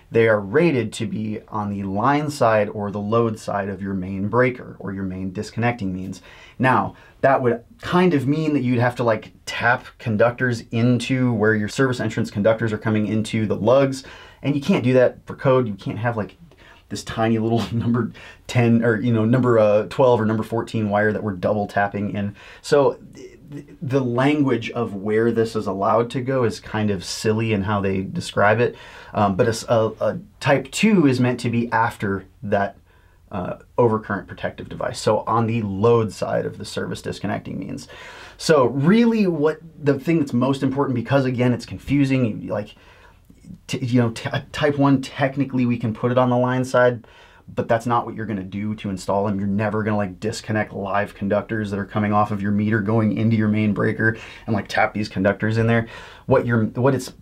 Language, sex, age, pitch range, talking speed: English, male, 30-49, 105-125 Hz, 200 wpm